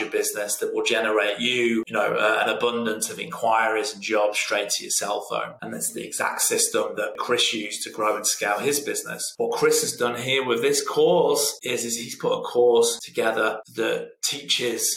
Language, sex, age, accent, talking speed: English, male, 20-39, British, 200 wpm